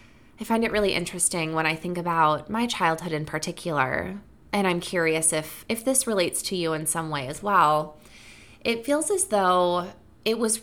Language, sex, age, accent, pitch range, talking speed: English, female, 20-39, American, 155-210 Hz, 185 wpm